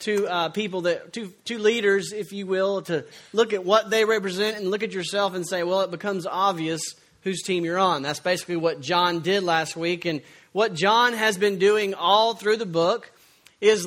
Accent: American